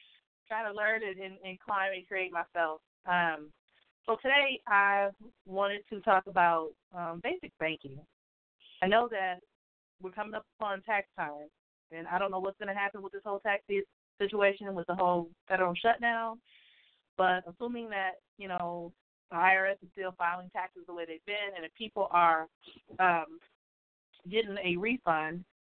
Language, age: English, 20-39